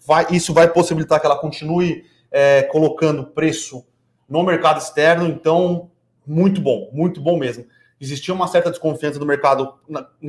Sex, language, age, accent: male, Portuguese, 30-49, Brazilian